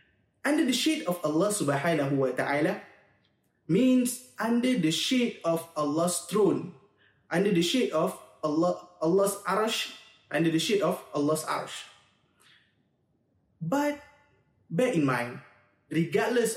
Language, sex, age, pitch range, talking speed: Malay, male, 20-39, 155-220 Hz, 120 wpm